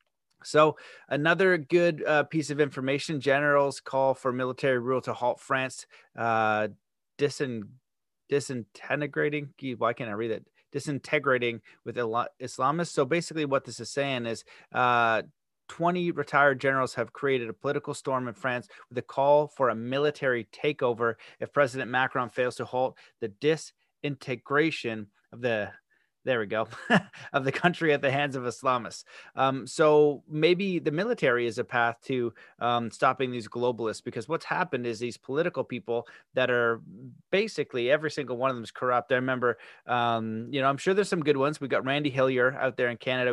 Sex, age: male, 30-49